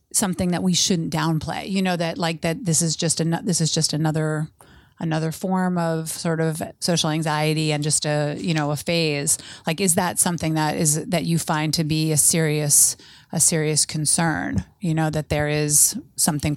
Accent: American